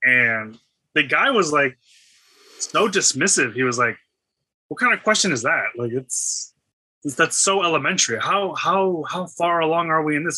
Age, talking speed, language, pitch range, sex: 20-39, 180 wpm, English, 120-155 Hz, male